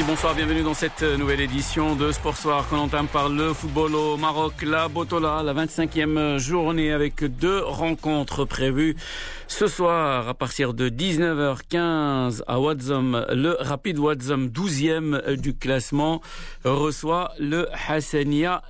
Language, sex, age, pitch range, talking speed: Arabic, male, 50-69, 135-160 Hz, 135 wpm